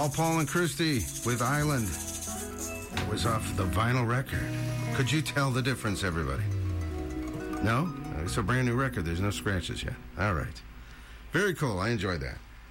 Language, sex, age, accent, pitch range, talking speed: English, male, 50-69, American, 95-135 Hz, 165 wpm